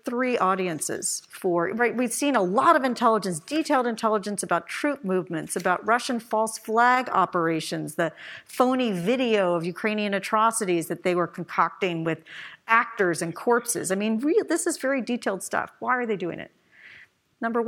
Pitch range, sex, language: 175-235 Hz, female, English